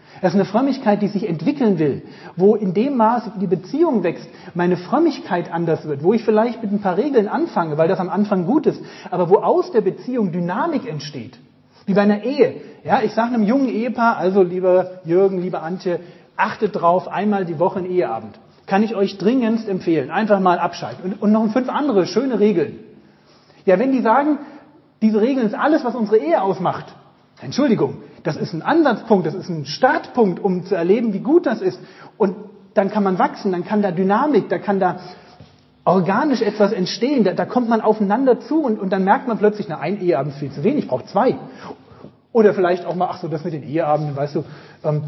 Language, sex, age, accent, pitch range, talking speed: German, male, 40-59, German, 175-225 Hz, 205 wpm